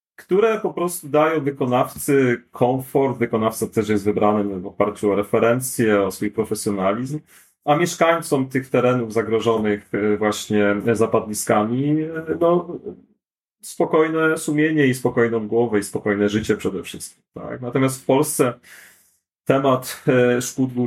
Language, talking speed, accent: Polish, 120 wpm, native